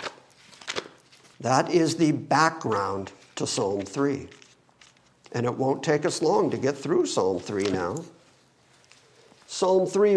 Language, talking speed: English, 125 wpm